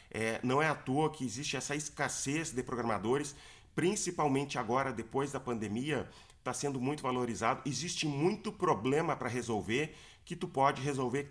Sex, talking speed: male, 155 wpm